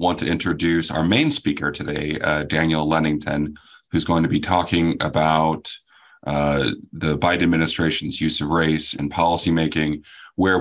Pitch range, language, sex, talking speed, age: 80-90 Hz, English, male, 145 wpm, 30-49